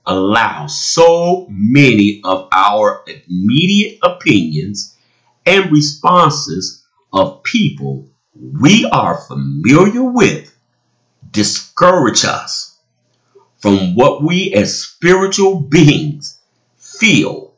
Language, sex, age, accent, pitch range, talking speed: English, male, 50-69, American, 100-155 Hz, 80 wpm